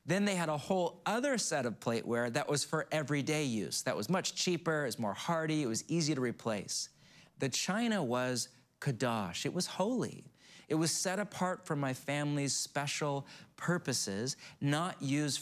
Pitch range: 135-180 Hz